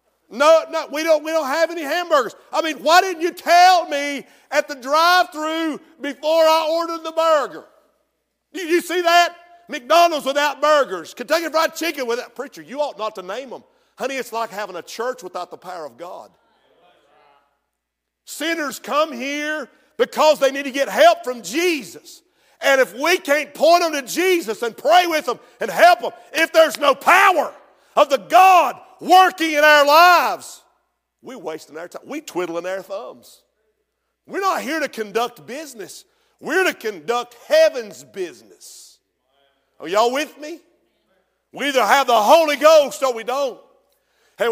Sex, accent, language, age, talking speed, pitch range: male, American, English, 50-69, 165 wpm, 255-330 Hz